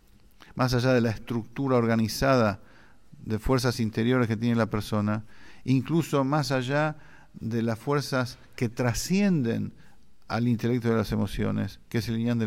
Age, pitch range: 50-69, 105-130 Hz